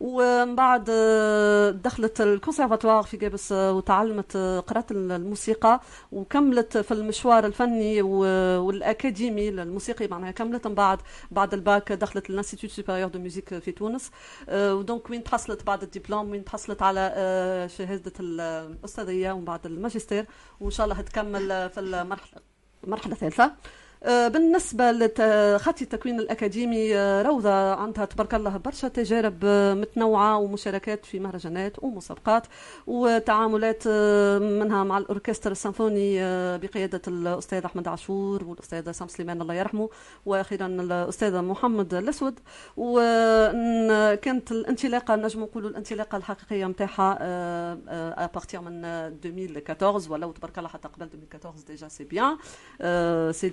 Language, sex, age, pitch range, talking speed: Arabic, female, 40-59, 185-225 Hz, 115 wpm